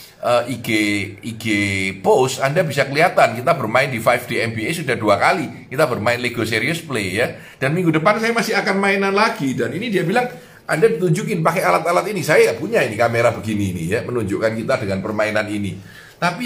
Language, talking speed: Indonesian, 180 wpm